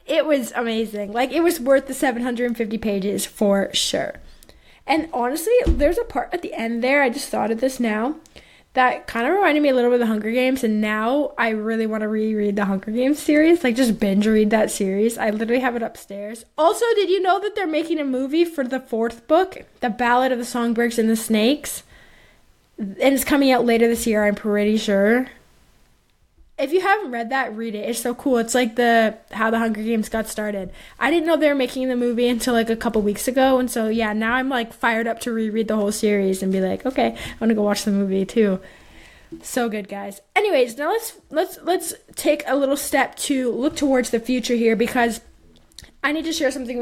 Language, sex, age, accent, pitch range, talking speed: English, female, 20-39, American, 220-270 Hz, 220 wpm